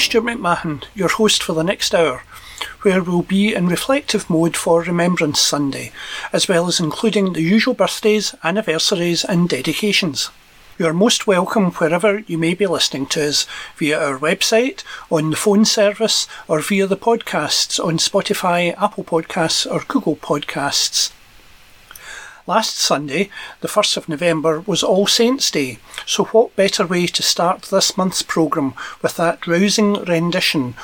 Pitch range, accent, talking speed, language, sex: 160-205 Hz, British, 155 wpm, English, male